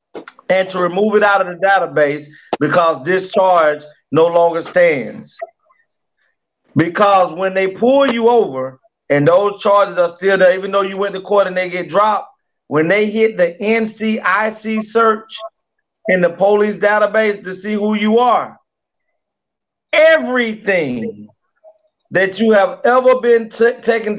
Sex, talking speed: male, 145 wpm